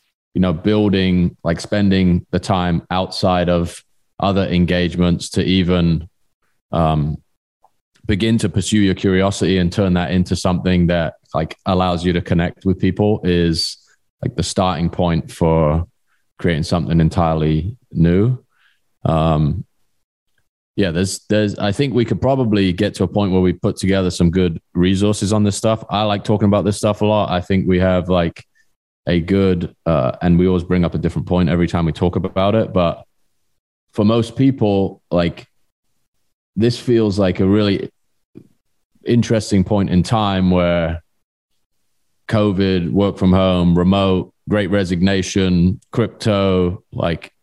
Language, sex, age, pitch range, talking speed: English, male, 20-39, 90-105 Hz, 150 wpm